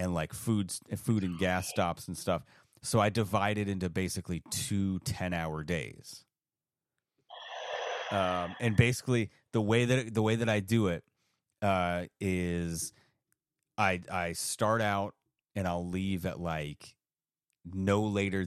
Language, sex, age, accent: English, male, 30-49, American